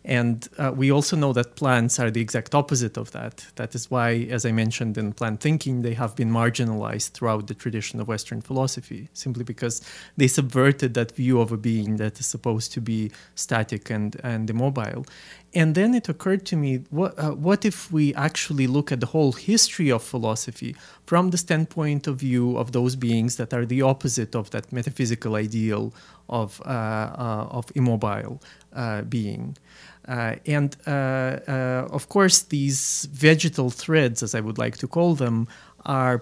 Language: English